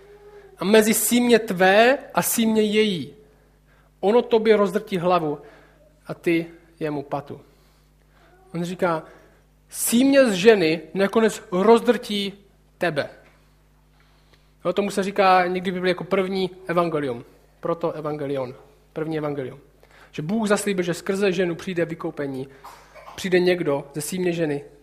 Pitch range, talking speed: 155-200 Hz, 120 wpm